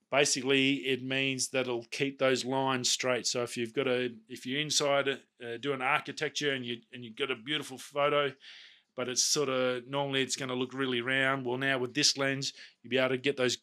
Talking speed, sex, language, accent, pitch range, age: 220 wpm, male, English, Australian, 125-140 Hz, 30-49